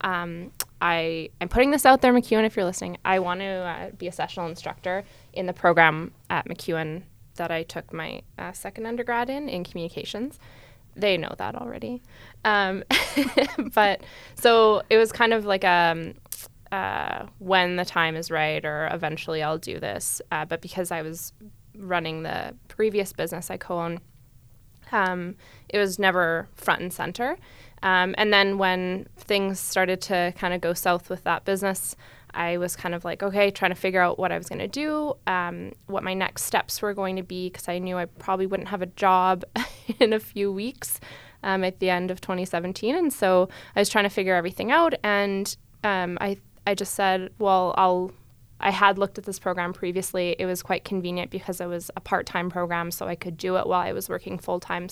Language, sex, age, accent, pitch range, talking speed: English, female, 10-29, American, 170-200 Hz, 190 wpm